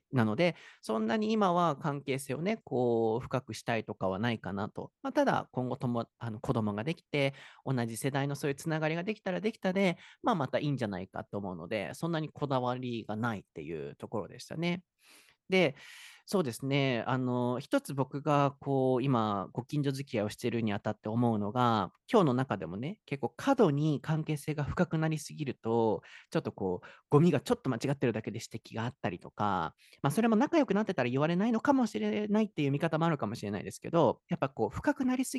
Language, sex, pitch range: Japanese, male, 115-175 Hz